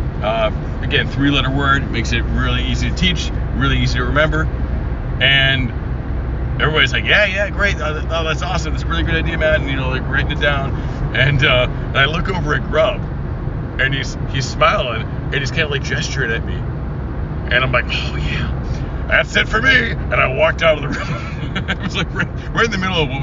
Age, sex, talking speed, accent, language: 40-59, male, 210 wpm, American, English